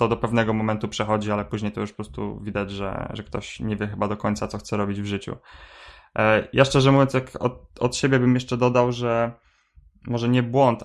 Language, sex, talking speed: Polish, male, 210 wpm